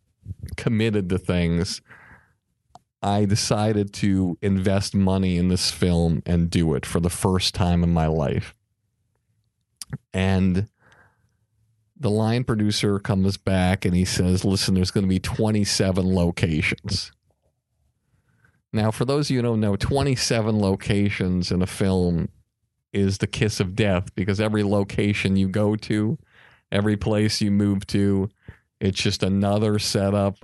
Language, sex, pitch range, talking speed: English, male, 95-110 Hz, 135 wpm